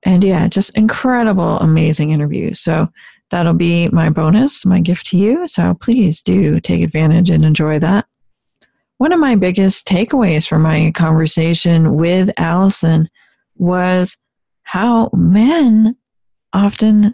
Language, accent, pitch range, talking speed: English, American, 170-225 Hz, 130 wpm